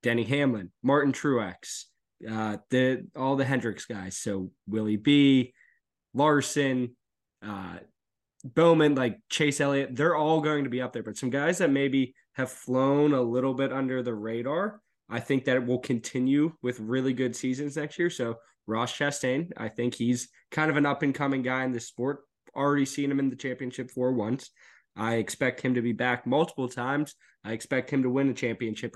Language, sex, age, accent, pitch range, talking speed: English, male, 20-39, American, 120-140 Hz, 180 wpm